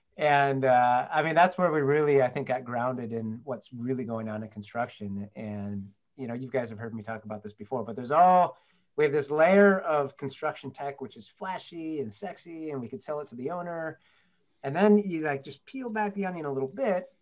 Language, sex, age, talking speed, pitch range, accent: English, male, 30-49, 230 wpm, 115-155 Hz, American